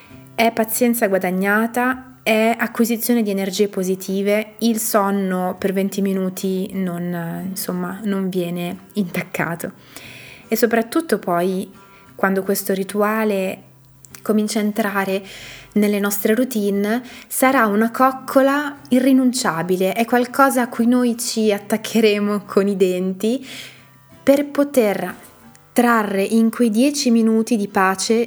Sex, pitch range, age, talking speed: female, 185-225 Hz, 20-39, 110 wpm